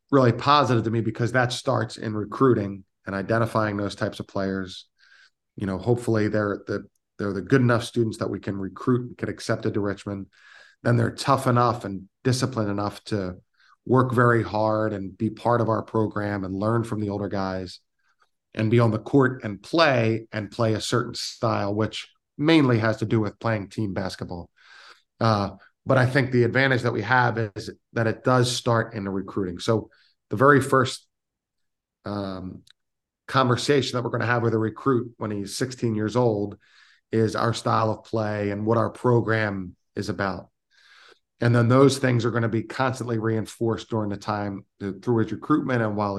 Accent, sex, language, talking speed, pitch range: American, male, English, 185 wpm, 100-120 Hz